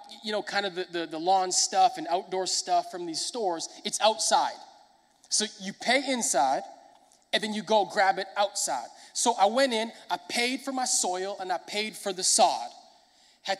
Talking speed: 195 wpm